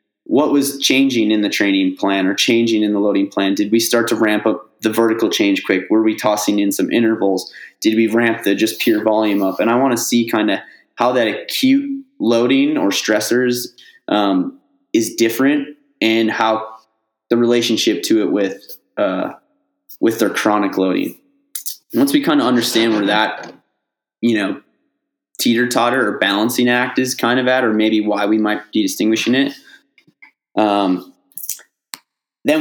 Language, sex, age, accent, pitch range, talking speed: English, male, 20-39, American, 105-140 Hz, 165 wpm